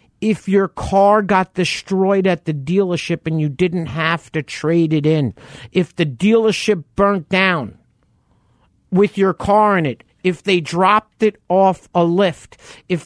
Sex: male